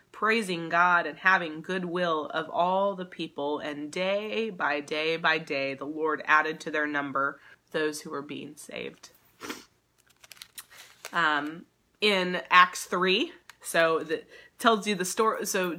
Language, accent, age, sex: English, American, 20-39, female